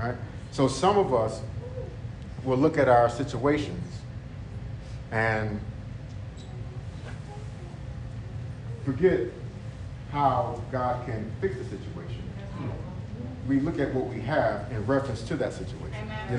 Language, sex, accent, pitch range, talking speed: English, male, American, 115-140 Hz, 105 wpm